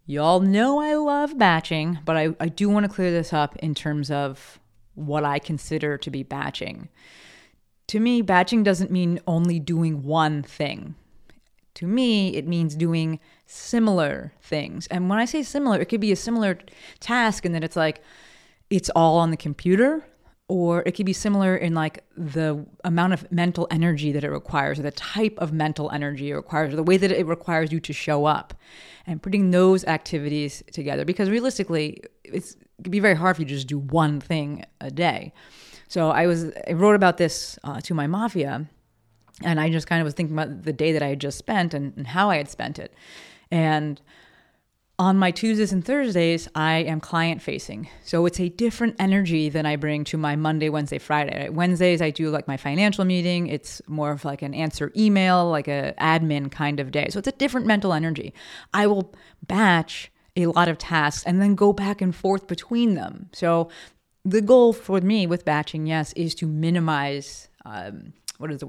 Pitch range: 155-190 Hz